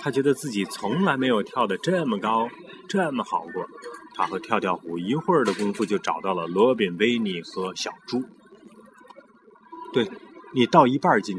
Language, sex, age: Chinese, male, 30-49